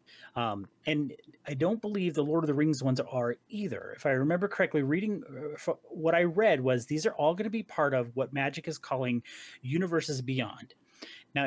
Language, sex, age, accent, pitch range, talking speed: English, male, 30-49, American, 125-160 Hz, 195 wpm